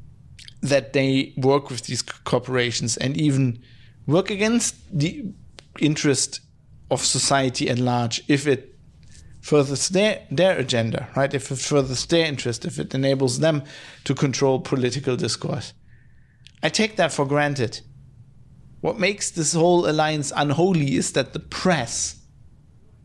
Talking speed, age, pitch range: 135 wpm, 50-69, 125-150 Hz